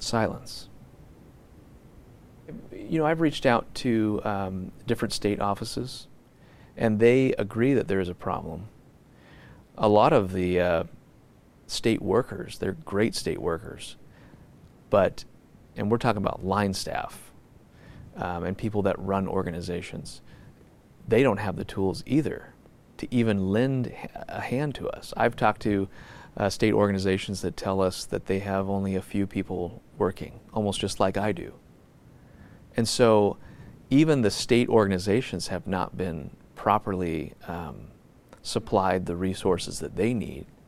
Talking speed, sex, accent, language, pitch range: 140 wpm, male, American, English, 95-120 Hz